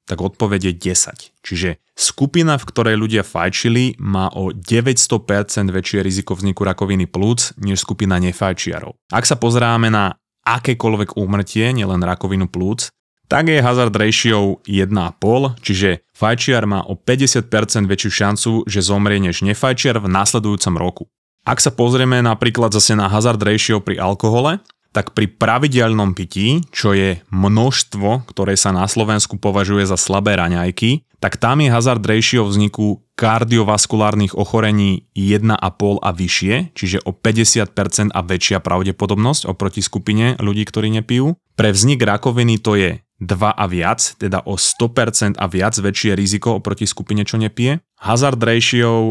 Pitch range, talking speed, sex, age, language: 100-115 Hz, 140 wpm, male, 20-39, Slovak